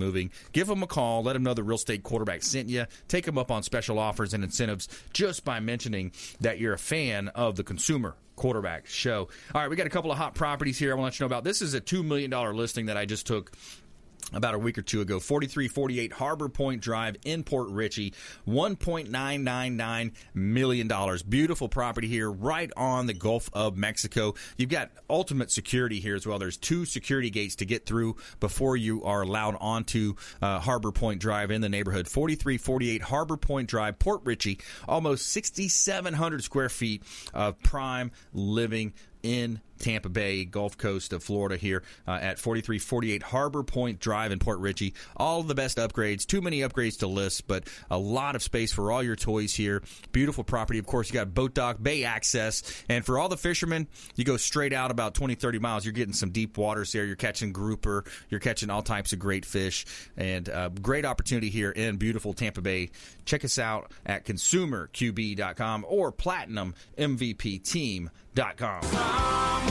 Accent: American